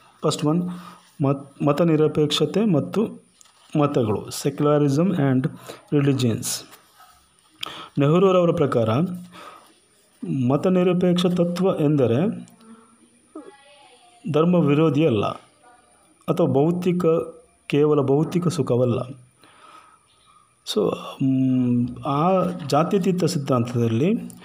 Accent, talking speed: native, 65 wpm